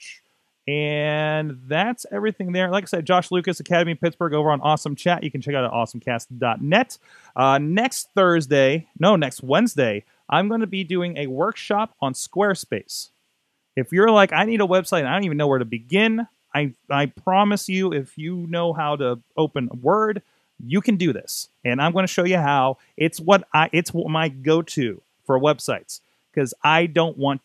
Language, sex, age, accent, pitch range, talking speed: English, male, 30-49, American, 135-175 Hz, 190 wpm